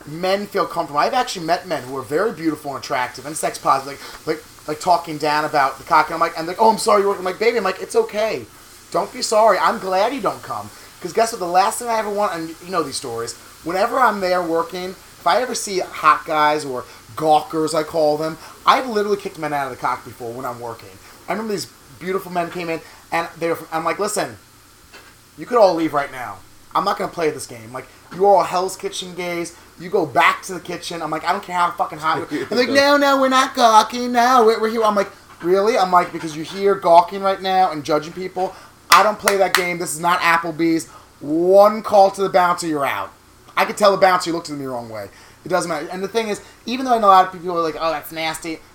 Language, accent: English, American